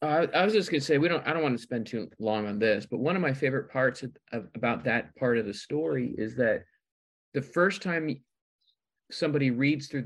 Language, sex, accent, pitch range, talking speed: English, male, American, 125-165 Hz, 240 wpm